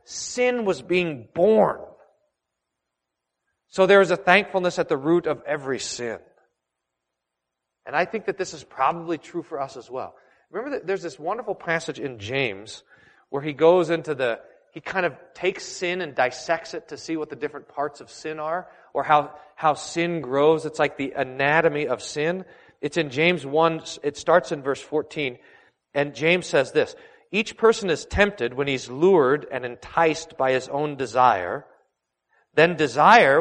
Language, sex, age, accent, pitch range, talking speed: English, male, 40-59, American, 135-165 Hz, 170 wpm